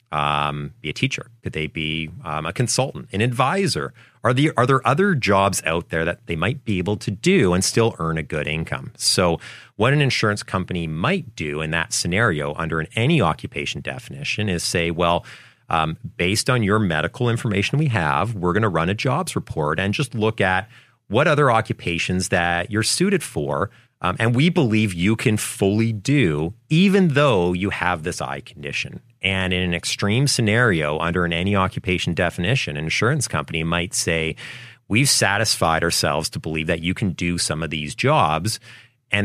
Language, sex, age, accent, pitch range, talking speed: English, male, 30-49, American, 85-115 Hz, 180 wpm